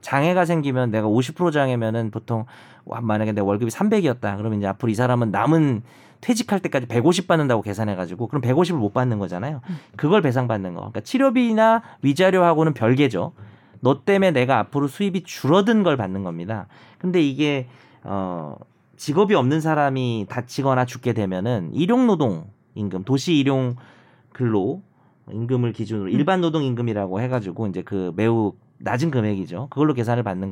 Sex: male